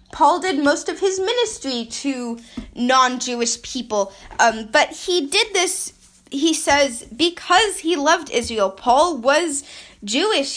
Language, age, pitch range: English, 10-29, 245-320 Hz